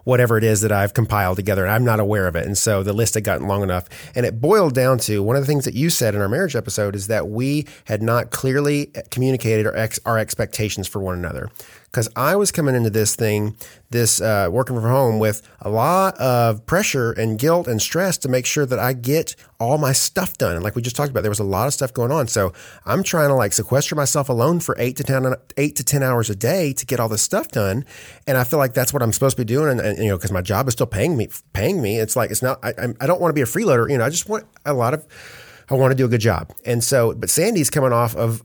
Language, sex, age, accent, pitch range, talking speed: English, male, 30-49, American, 110-135 Hz, 280 wpm